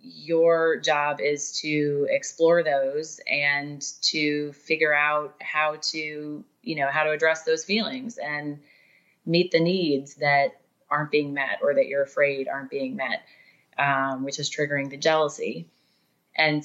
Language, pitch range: English, 145-175 Hz